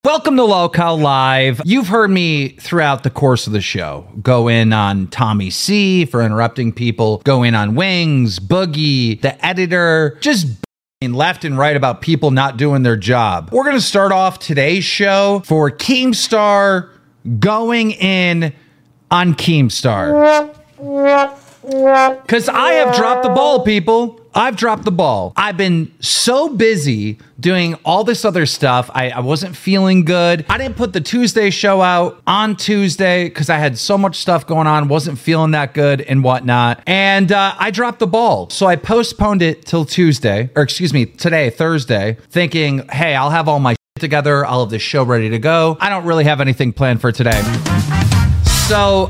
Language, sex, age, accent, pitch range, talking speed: English, male, 30-49, American, 130-190 Hz, 170 wpm